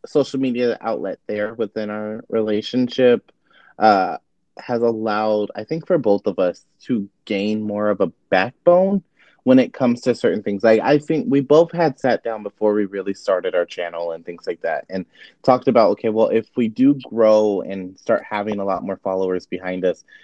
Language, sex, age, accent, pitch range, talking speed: English, male, 20-39, American, 95-115 Hz, 190 wpm